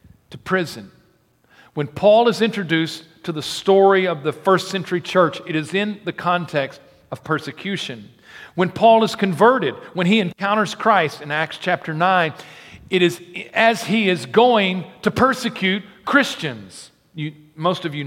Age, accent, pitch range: 40-59, American, 155-200 Hz